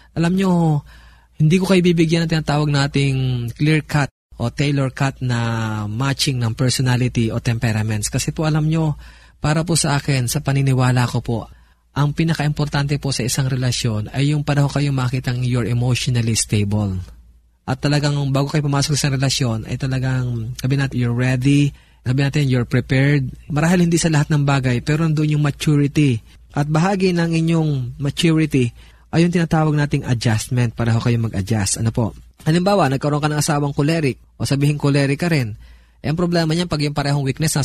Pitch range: 125-150 Hz